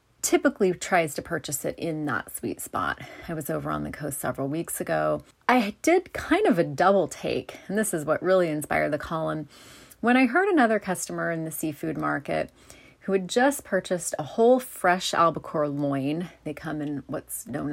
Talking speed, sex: 190 wpm, female